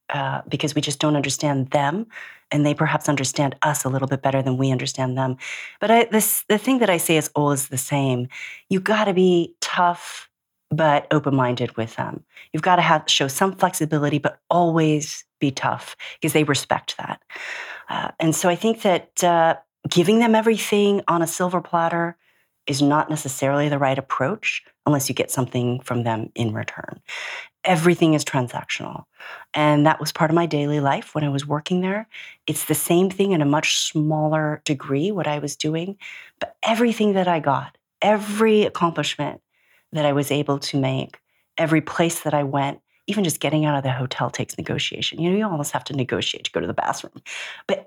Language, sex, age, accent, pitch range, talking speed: English, female, 40-59, American, 140-180 Hz, 190 wpm